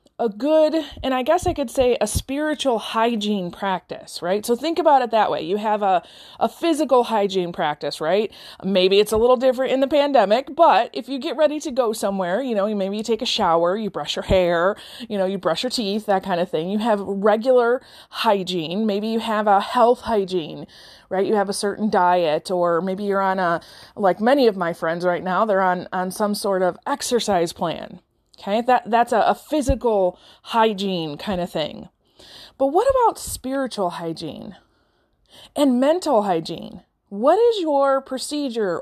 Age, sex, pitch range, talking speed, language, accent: 20-39, female, 185-255 Hz, 185 wpm, English, American